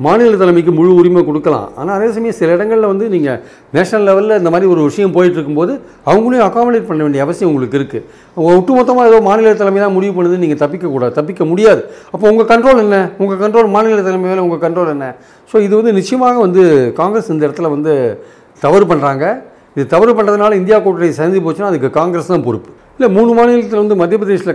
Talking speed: 195 wpm